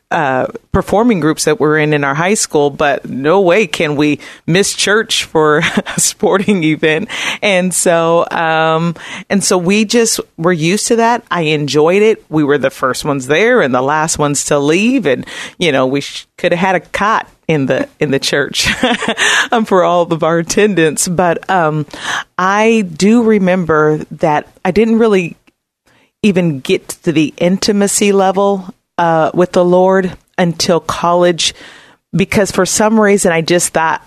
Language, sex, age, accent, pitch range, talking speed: English, female, 40-59, American, 155-200 Hz, 170 wpm